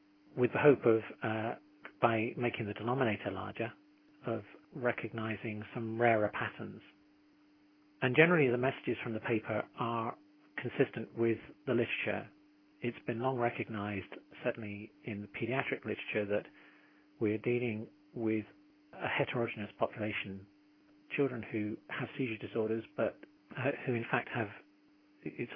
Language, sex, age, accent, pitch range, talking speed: English, male, 40-59, British, 110-140 Hz, 125 wpm